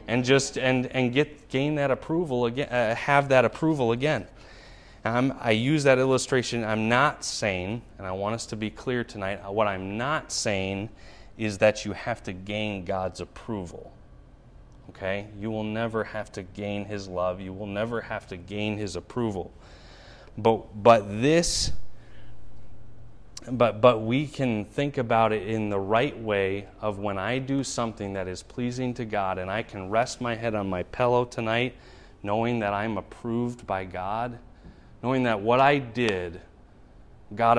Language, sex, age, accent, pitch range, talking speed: English, male, 30-49, American, 100-125 Hz, 165 wpm